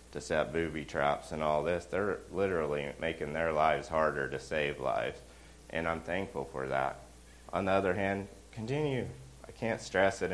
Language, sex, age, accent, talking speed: English, male, 30-49, American, 190 wpm